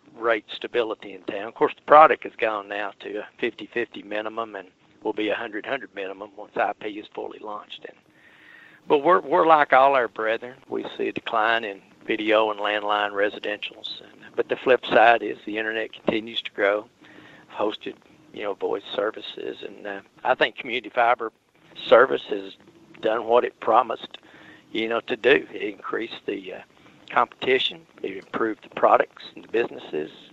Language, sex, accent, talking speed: English, male, American, 170 wpm